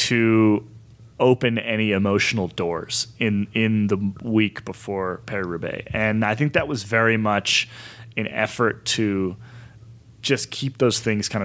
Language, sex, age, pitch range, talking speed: English, male, 30-49, 105-120 Hz, 140 wpm